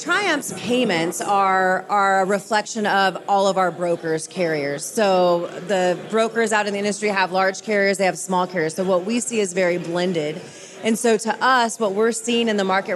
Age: 30-49